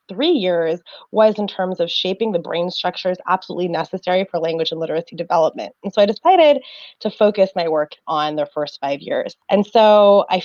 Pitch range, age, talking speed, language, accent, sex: 170-205 Hz, 20-39, 190 wpm, English, American, female